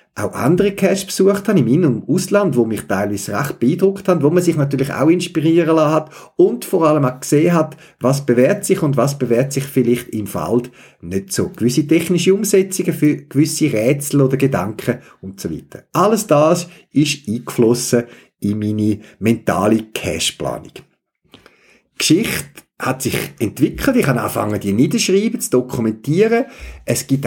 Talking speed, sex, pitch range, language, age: 160 wpm, male, 115-165 Hz, German, 50-69